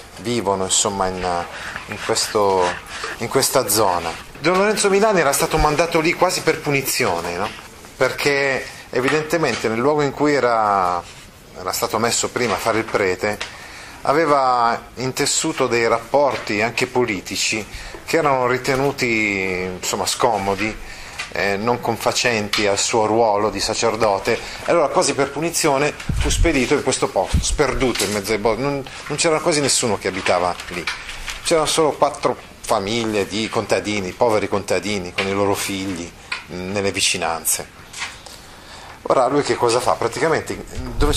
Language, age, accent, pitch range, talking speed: Italian, 30-49, native, 100-140 Hz, 140 wpm